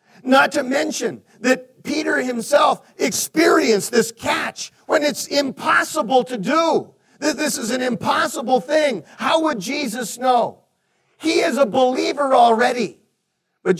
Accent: American